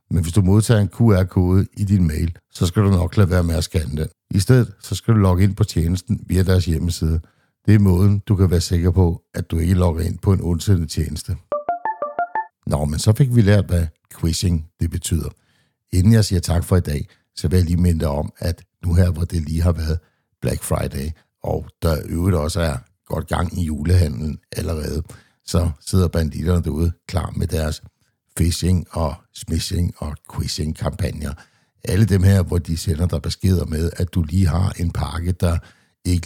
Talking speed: 200 wpm